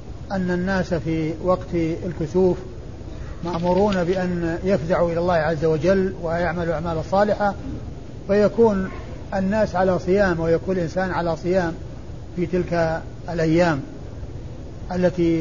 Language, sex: Arabic, male